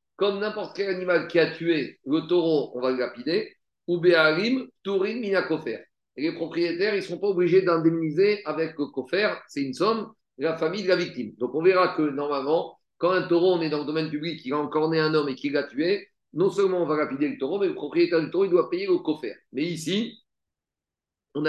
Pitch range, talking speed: 160-215 Hz, 225 wpm